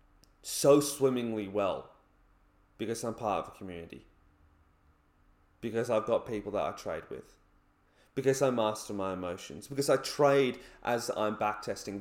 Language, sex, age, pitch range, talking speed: English, male, 30-49, 100-140 Hz, 140 wpm